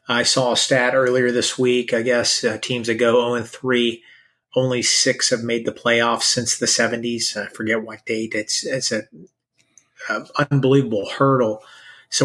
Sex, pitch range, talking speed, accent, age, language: male, 115-130 Hz, 170 wpm, American, 30-49, English